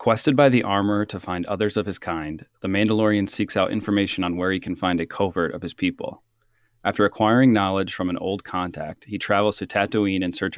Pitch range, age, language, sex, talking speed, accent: 95-110 Hz, 30-49, English, male, 215 wpm, American